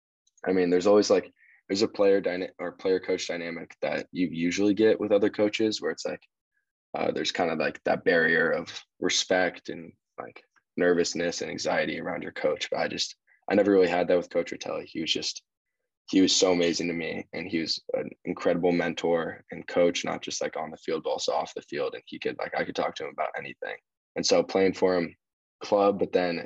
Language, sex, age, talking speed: English, male, 10-29, 220 wpm